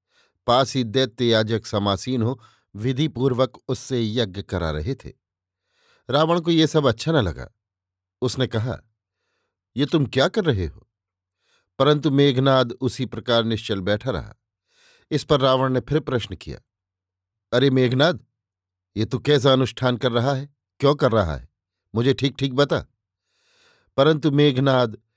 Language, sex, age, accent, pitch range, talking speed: Hindi, male, 50-69, native, 95-135 Hz, 140 wpm